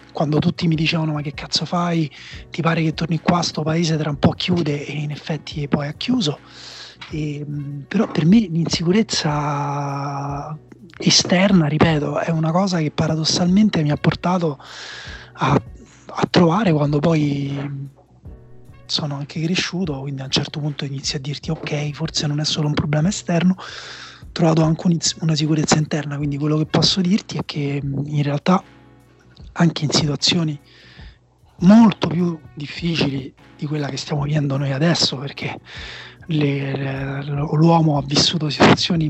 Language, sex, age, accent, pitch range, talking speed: Italian, male, 20-39, native, 150-170 Hz, 155 wpm